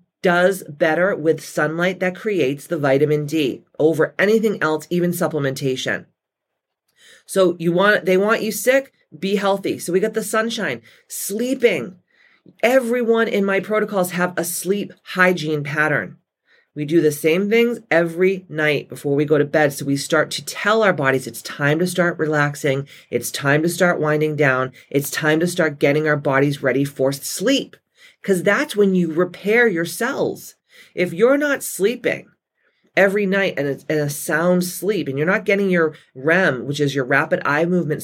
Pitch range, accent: 150-205 Hz, American